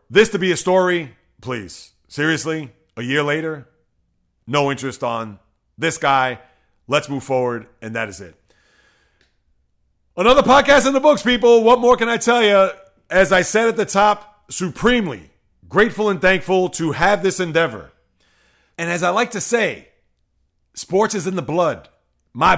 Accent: American